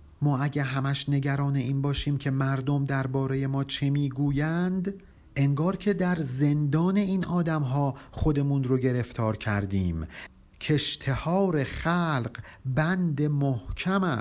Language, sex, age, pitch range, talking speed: Persian, male, 50-69, 120-155 Hz, 110 wpm